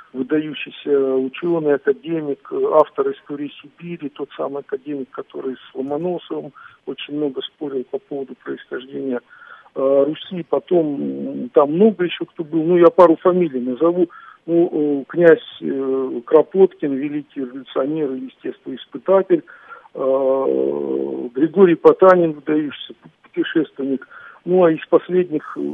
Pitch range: 140-220 Hz